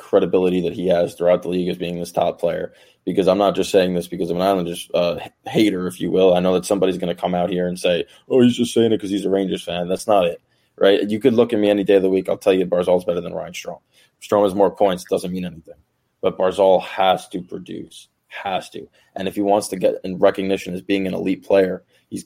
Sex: male